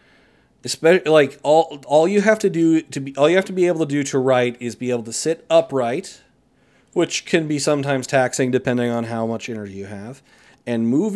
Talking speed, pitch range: 215 wpm, 130-165 Hz